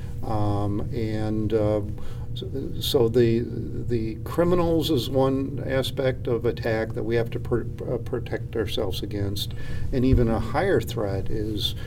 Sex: male